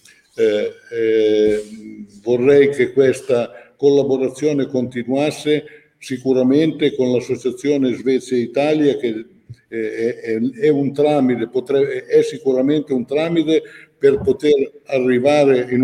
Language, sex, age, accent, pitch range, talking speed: Italian, male, 60-79, native, 120-145 Hz, 95 wpm